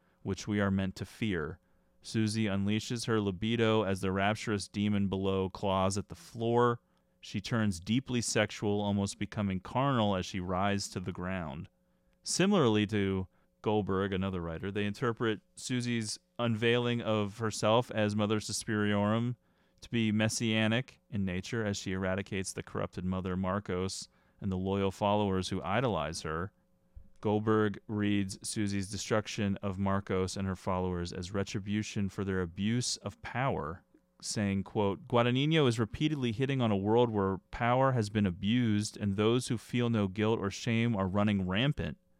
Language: English